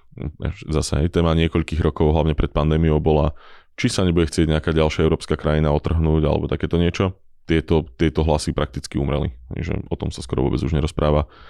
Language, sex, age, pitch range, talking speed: Slovak, male, 20-39, 75-85 Hz, 170 wpm